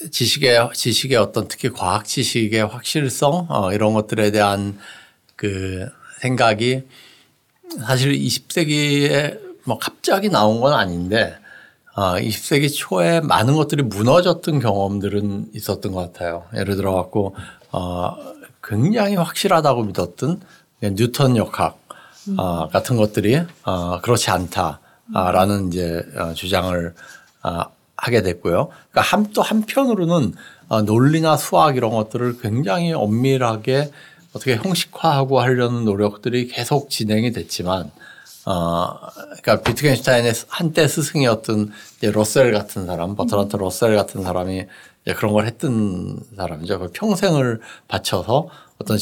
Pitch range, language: 100-140 Hz, Korean